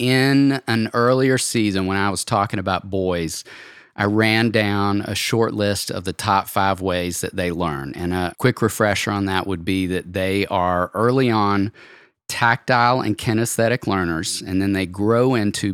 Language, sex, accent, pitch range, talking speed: English, male, American, 95-115 Hz, 175 wpm